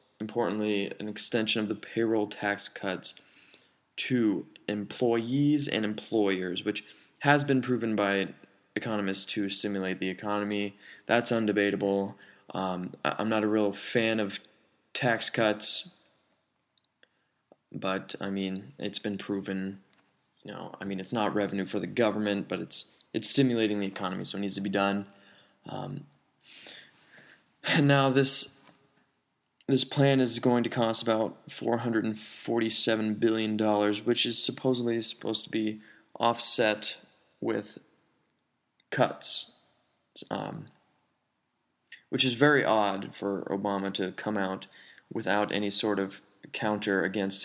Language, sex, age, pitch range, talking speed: English, male, 20-39, 100-115 Hz, 125 wpm